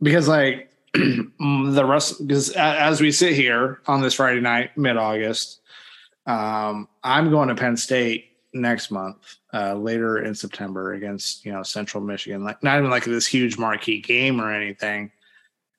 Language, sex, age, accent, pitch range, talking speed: English, male, 20-39, American, 105-130 Hz, 155 wpm